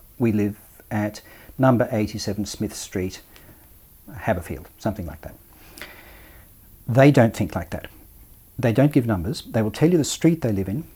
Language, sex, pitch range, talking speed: English, male, 105-130 Hz, 160 wpm